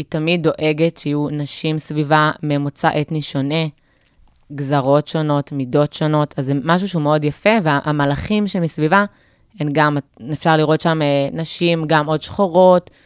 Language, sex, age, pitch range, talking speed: Hebrew, female, 20-39, 145-170 Hz, 140 wpm